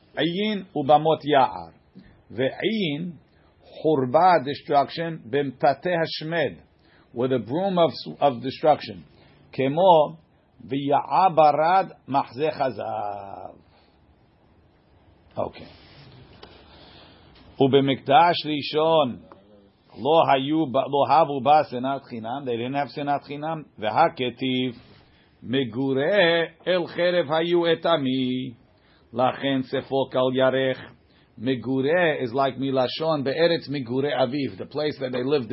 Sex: male